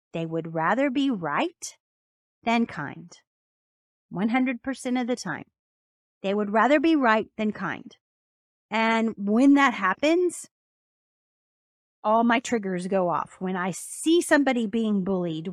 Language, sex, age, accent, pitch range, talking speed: English, female, 30-49, American, 195-250 Hz, 130 wpm